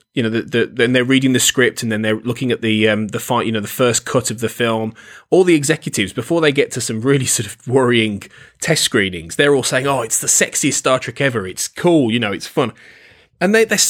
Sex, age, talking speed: male, 20-39, 250 wpm